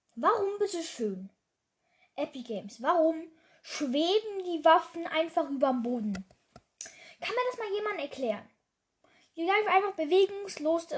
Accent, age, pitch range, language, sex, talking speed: German, 10-29, 265-345 Hz, German, female, 125 wpm